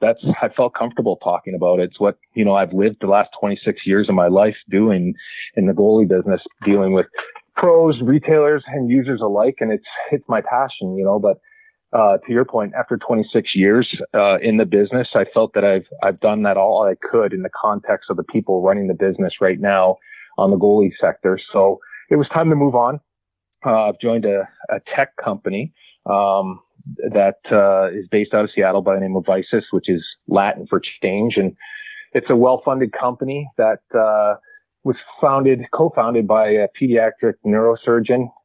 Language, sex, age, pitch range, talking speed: English, male, 30-49, 100-130 Hz, 190 wpm